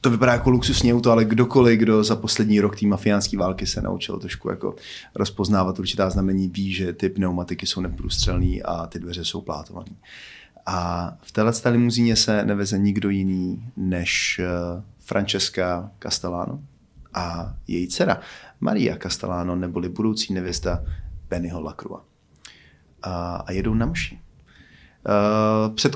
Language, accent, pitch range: Czech, native, 90-110 Hz